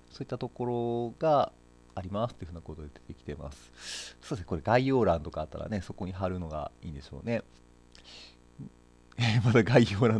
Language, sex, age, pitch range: Japanese, male, 40-59, 80-120 Hz